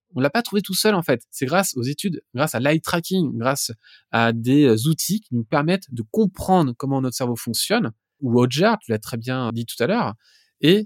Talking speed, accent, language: 220 wpm, French, French